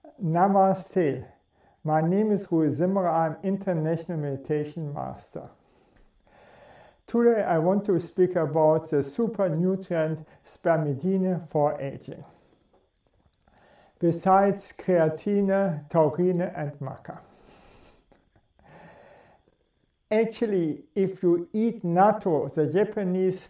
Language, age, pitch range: English, 50-69, 155-195 Hz